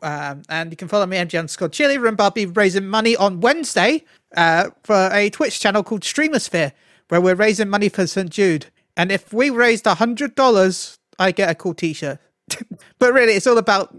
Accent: British